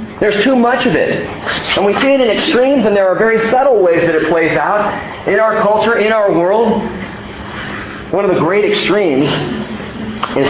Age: 40-59